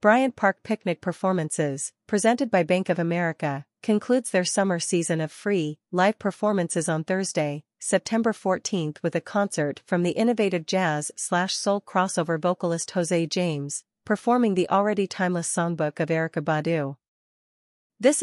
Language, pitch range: English, 165-200 Hz